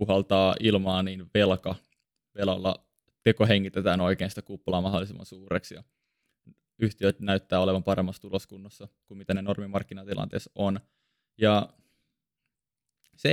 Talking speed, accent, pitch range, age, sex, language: 110 wpm, native, 100-110 Hz, 20-39, male, Finnish